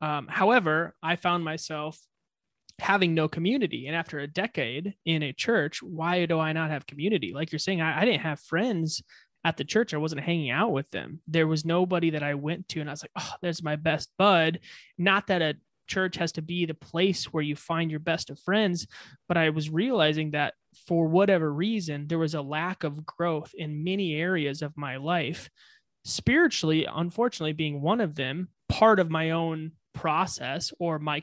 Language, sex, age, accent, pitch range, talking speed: English, male, 20-39, American, 150-175 Hz, 200 wpm